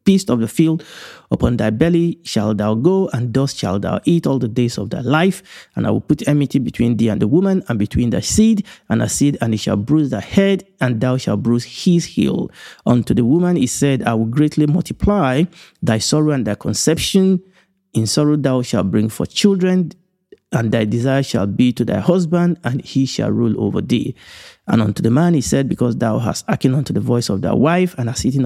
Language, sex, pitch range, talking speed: English, male, 115-165 Hz, 220 wpm